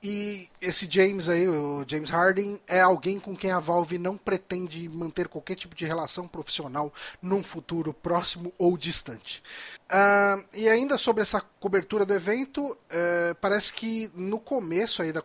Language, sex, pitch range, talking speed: Portuguese, male, 160-205 Hz, 160 wpm